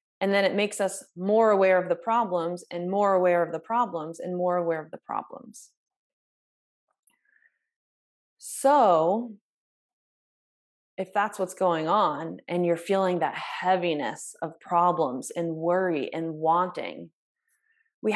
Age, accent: 20-39, American